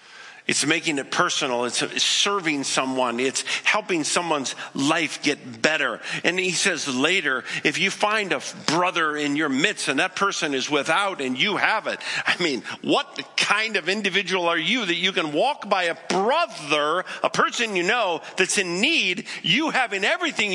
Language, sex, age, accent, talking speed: English, male, 50-69, American, 170 wpm